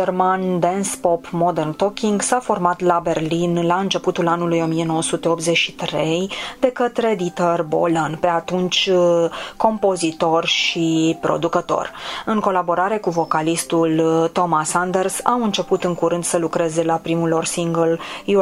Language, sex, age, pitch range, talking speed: Romanian, female, 20-39, 165-195 Hz, 125 wpm